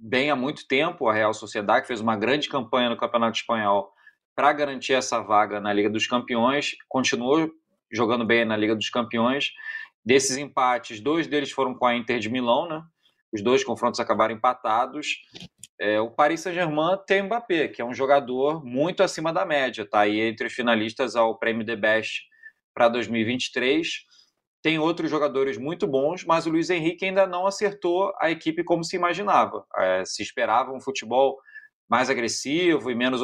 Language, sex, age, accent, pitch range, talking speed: Portuguese, male, 20-39, Brazilian, 115-165 Hz, 175 wpm